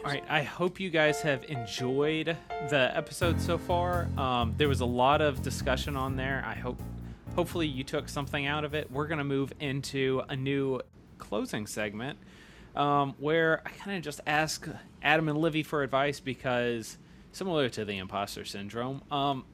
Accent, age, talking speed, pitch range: American, 30-49, 180 wpm, 115-155 Hz